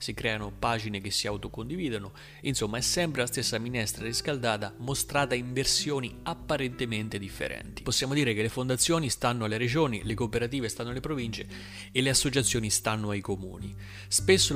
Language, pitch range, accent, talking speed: Italian, 105-130 Hz, native, 155 wpm